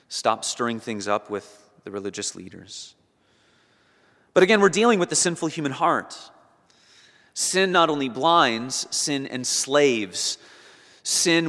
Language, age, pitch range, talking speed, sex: English, 30-49, 110-155 Hz, 125 wpm, male